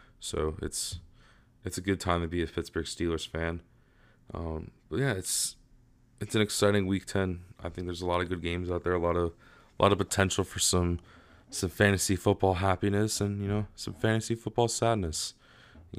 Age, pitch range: 20-39, 85-100 Hz